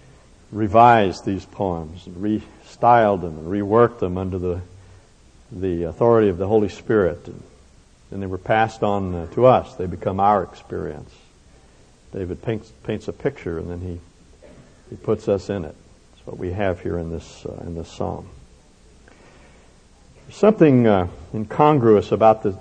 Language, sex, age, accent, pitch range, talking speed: English, male, 60-79, American, 85-110 Hz, 155 wpm